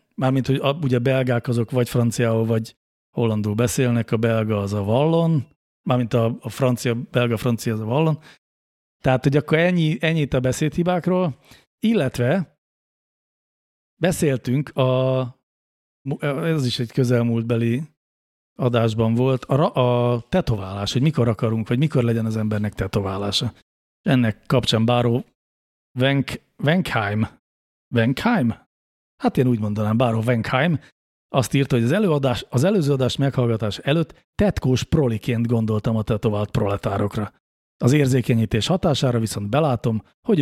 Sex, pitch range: male, 110-135 Hz